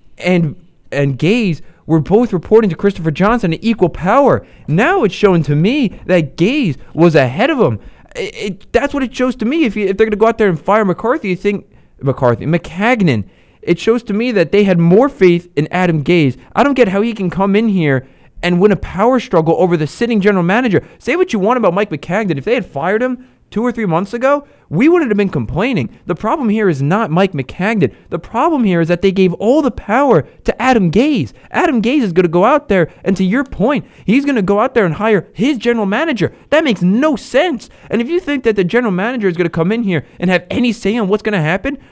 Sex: male